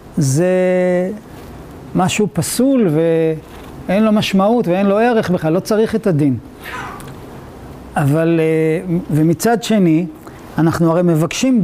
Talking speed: 105 wpm